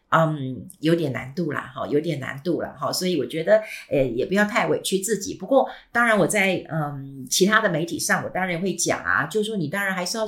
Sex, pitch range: female, 165-215 Hz